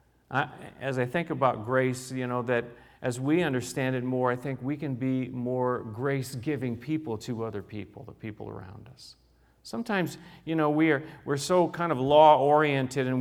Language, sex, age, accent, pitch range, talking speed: English, male, 40-59, American, 125-175 Hz, 170 wpm